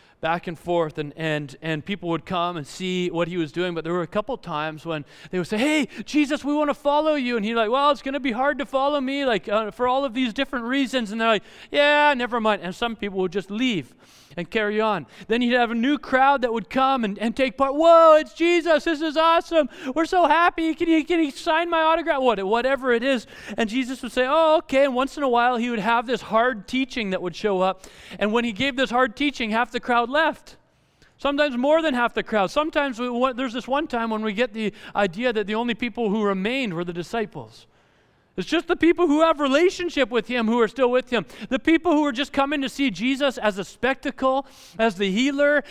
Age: 30-49